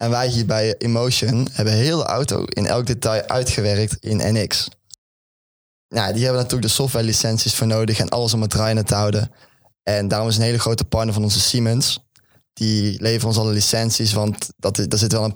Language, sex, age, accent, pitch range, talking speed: Dutch, male, 10-29, Dutch, 105-120 Hz, 195 wpm